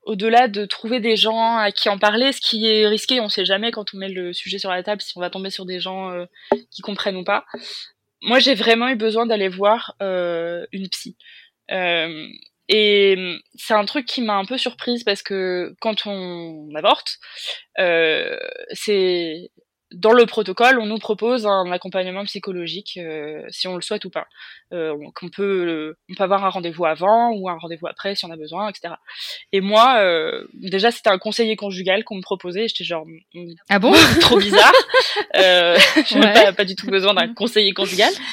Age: 20-39